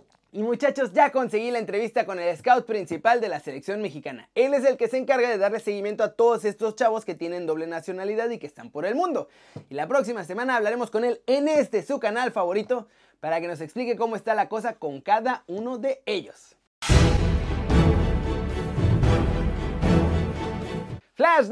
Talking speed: 175 wpm